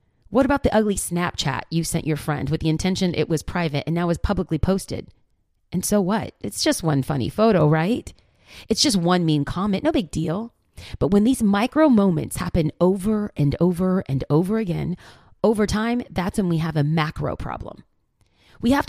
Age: 30-49